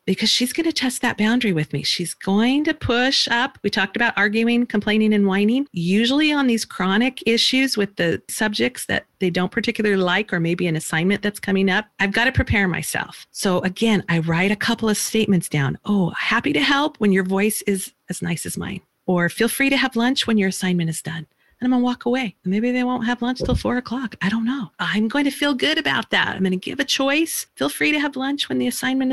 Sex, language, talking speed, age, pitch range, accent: female, English, 235 wpm, 40-59, 185-255 Hz, American